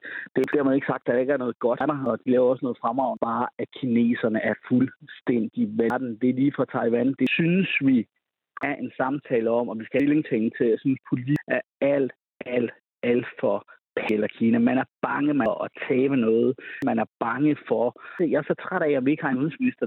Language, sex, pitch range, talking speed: Danish, male, 125-160 Hz, 215 wpm